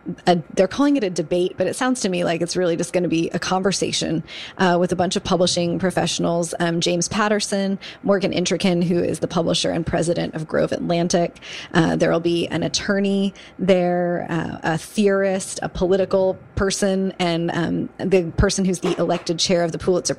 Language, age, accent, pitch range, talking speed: English, 20-39, American, 175-195 Hz, 195 wpm